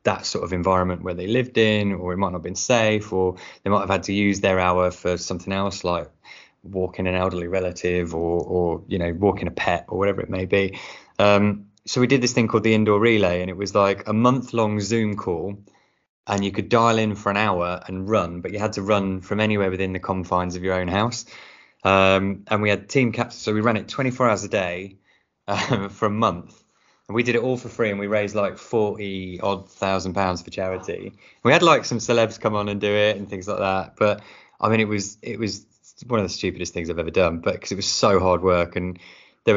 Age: 20-39